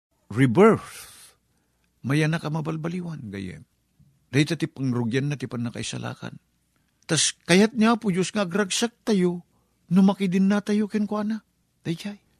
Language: Filipino